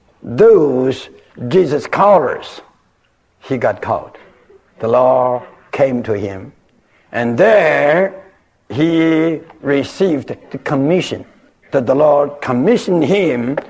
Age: 60-79